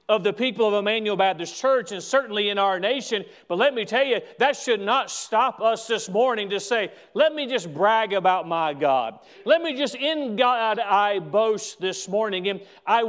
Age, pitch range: 40-59, 190-240 Hz